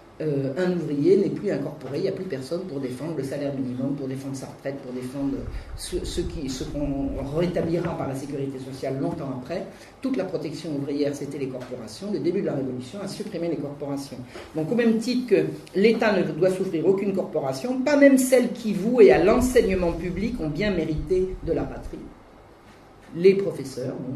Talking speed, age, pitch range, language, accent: 195 wpm, 40-59, 145-205 Hz, French, French